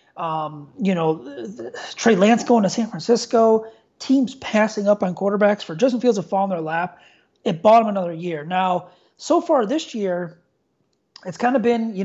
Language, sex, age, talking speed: English, male, 30-49, 185 wpm